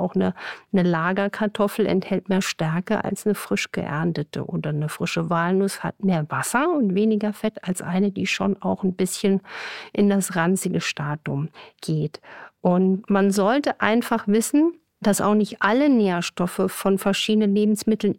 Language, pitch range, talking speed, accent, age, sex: German, 180-215 Hz, 150 wpm, German, 50-69, female